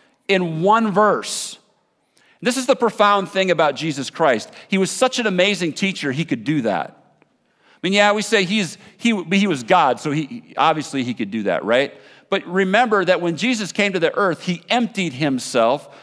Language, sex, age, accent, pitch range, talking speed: English, male, 50-69, American, 145-200 Hz, 190 wpm